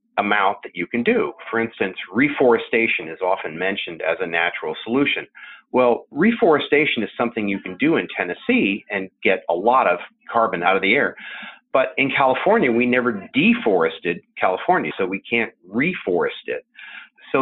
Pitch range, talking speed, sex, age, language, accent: 105-160 Hz, 160 wpm, male, 40-59, English, American